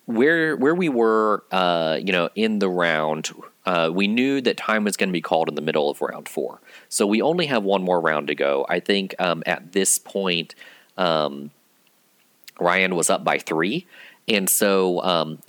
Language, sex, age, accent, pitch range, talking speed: English, male, 30-49, American, 80-100 Hz, 195 wpm